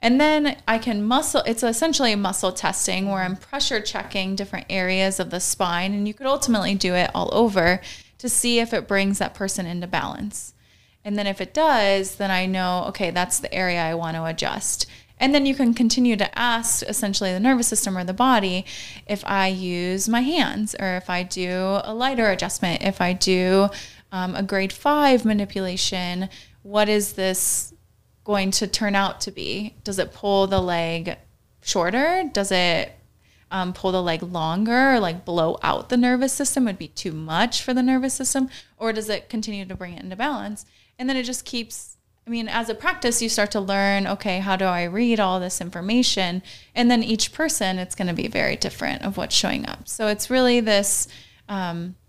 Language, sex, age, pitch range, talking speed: English, female, 20-39, 185-235 Hz, 200 wpm